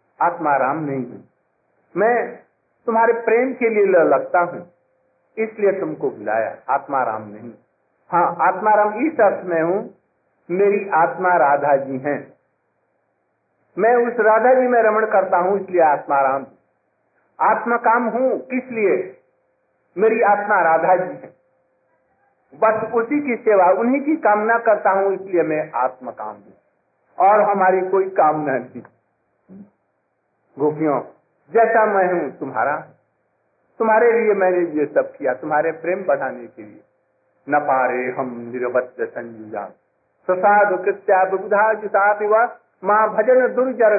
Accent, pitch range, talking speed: native, 155-225 Hz, 120 wpm